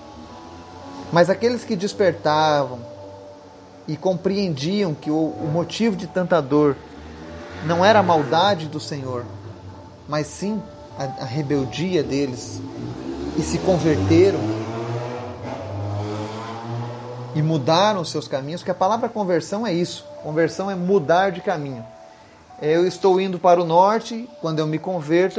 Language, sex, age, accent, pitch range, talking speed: Portuguese, male, 30-49, Brazilian, 120-185 Hz, 125 wpm